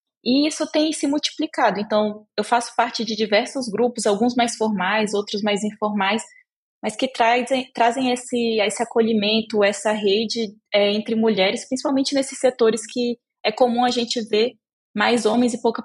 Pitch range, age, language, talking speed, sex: 210-245 Hz, 20-39, Portuguese, 160 wpm, female